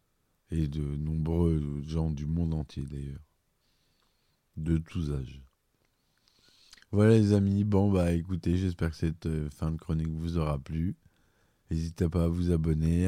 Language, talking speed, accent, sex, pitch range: French, 140 wpm, French, male, 75-90 Hz